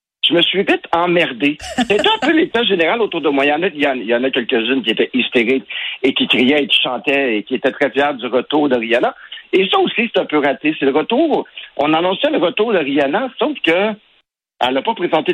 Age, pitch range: 60-79, 135-185 Hz